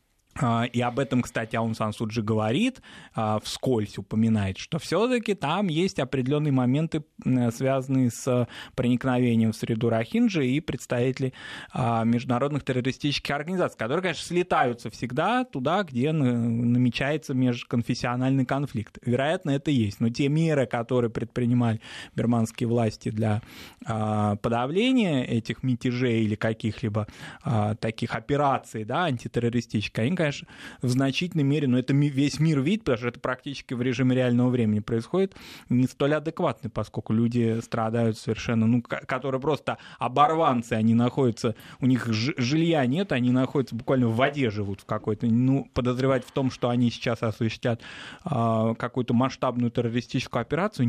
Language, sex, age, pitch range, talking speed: Russian, male, 20-39, 115-140 Hz, 130 wpm